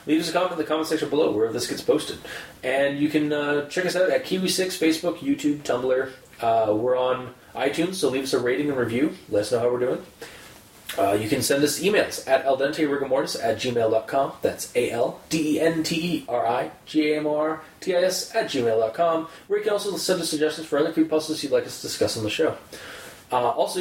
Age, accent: 30-49, American